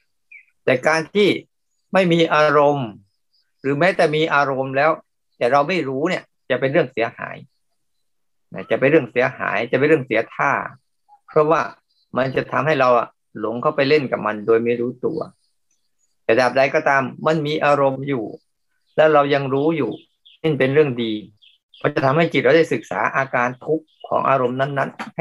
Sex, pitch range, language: male, 130-160 Hz, Thai